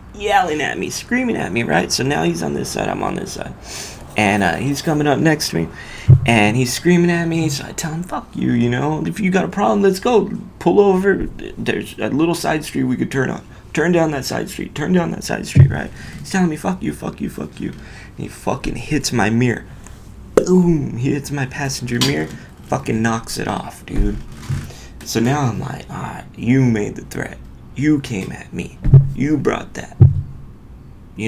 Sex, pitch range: male, 110-150 Hz